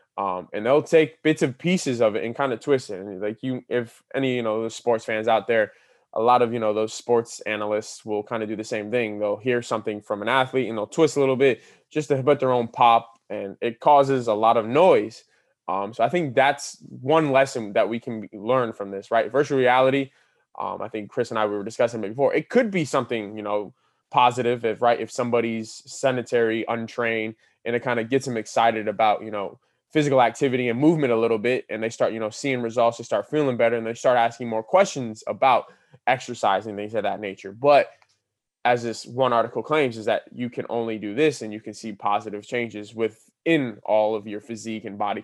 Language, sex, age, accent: English, male, 20-39, American